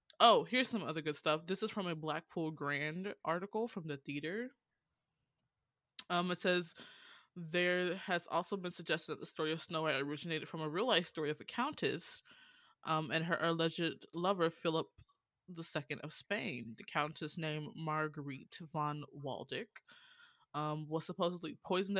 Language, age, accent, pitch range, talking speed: English, 20-39, American, 150-180 Hz, 155 wpm